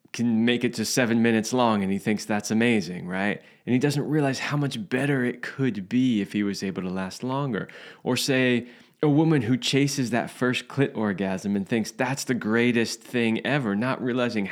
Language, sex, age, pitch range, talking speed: English, male, 20-39, 110-145 Hz, 205 wpm